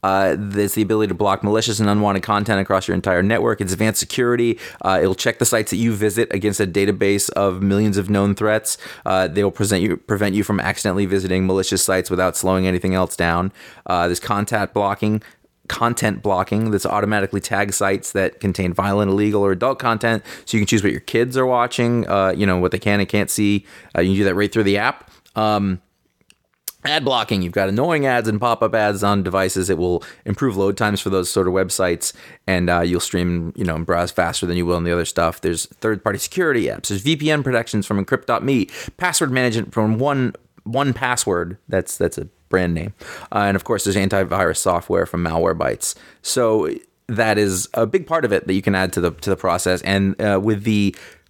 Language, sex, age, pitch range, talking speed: English, male, 30-49, 95-110 Hz, 210 wpm